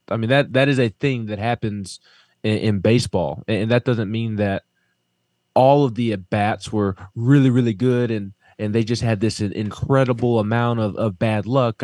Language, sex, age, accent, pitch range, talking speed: English, male, 20-39, American, 110-130 Hz, 190 wpm